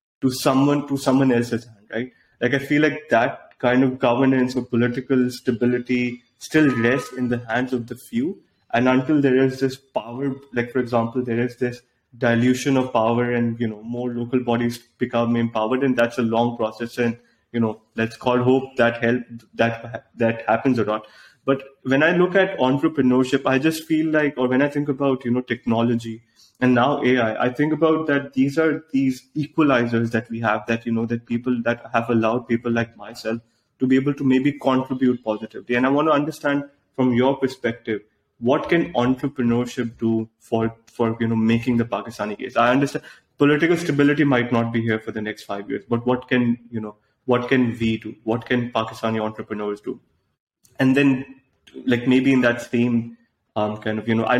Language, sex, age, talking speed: English, male, 20-39, 195 wpm